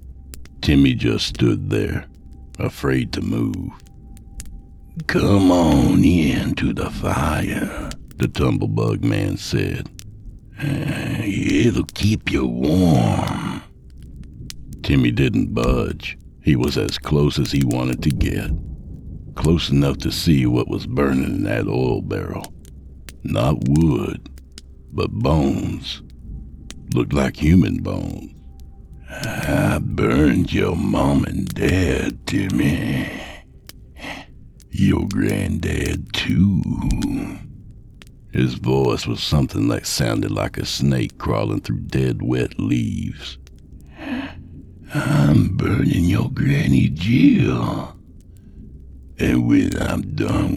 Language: English